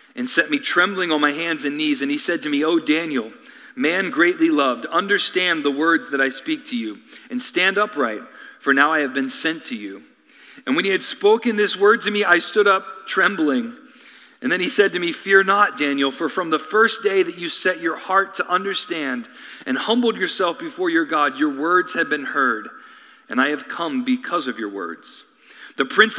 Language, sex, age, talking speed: English, male, 40-59, 215 wpm